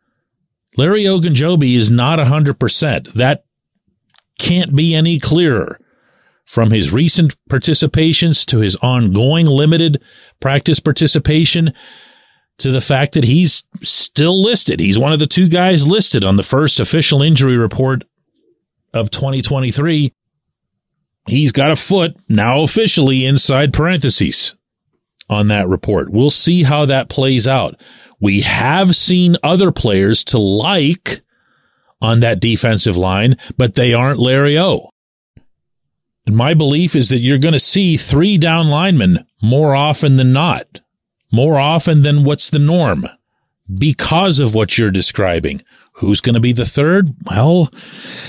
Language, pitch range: English, 115-160 Hz